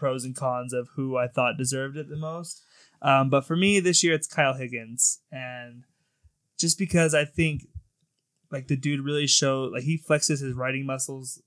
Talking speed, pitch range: 190 wpm, 125-145 Hz